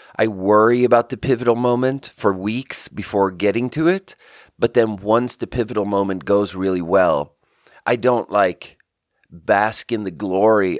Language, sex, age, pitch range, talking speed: English, male, 30-49, 105-140 Hz, 155 wpm